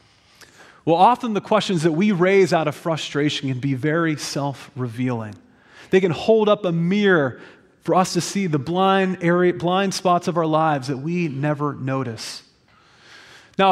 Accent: American